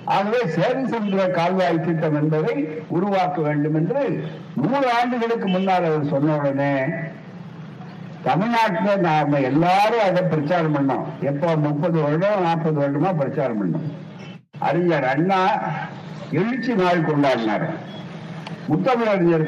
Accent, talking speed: native, 55 wpm